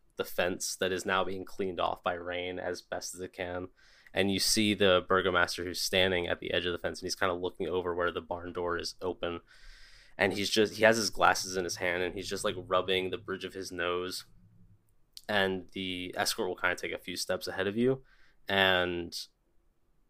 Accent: American